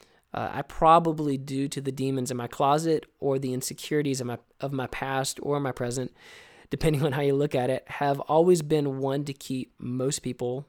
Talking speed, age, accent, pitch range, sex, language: 195 wpm, 20-39, American, 130-155 Hz, male, English